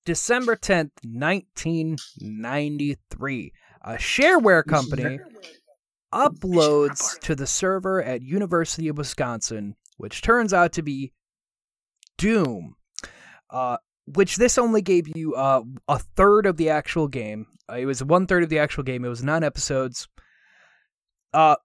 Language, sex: English, male